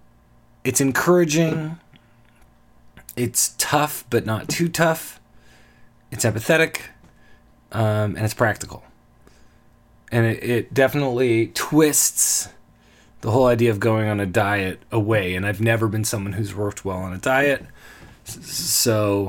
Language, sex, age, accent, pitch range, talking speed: English, male, 30-49, American, 100-130 Hz, 125 wpm